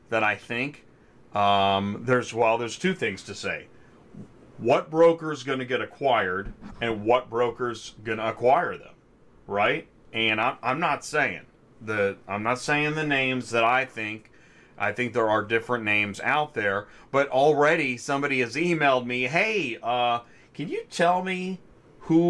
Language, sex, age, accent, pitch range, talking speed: English, male, 30-49, American, 115-155 Hz, 155 wpm